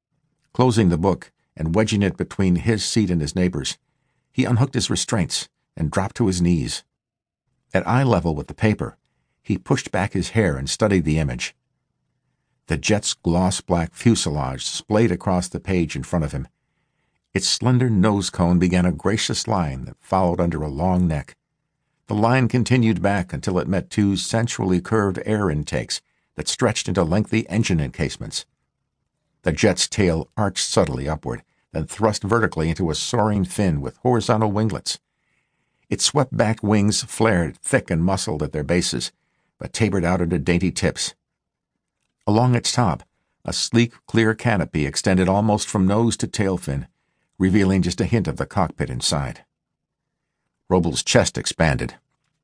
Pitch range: 90-115 Hz